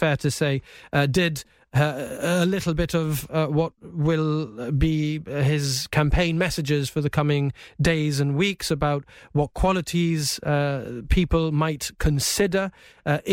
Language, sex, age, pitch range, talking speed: English, male, 30-49, 150-175 Hz, 140 wpm